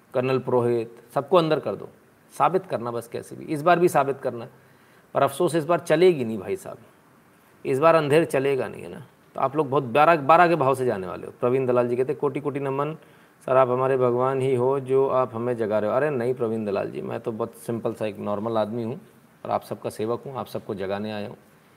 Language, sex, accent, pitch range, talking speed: Hindi, male, native, 125-160 Hz, 235 wpm